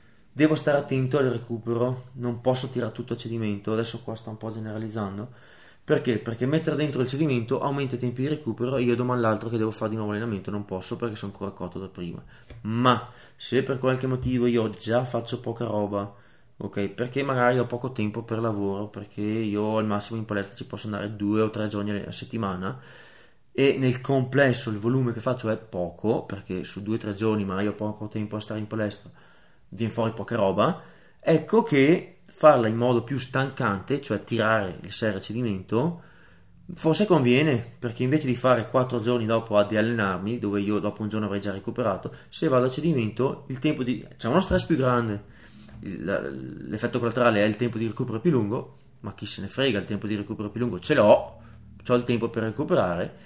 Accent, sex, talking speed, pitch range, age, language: native, male, 200 wpm, 105-125 Hz, 20-39, Italian